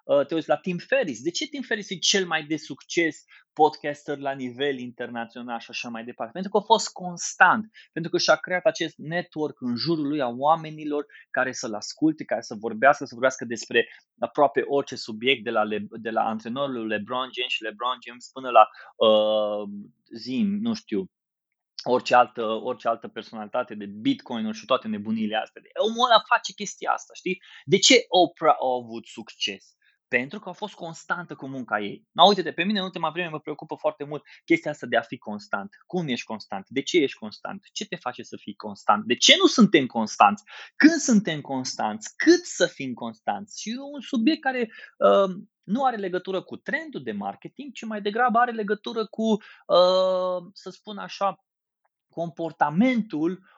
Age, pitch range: 20-39, 130-210 Hz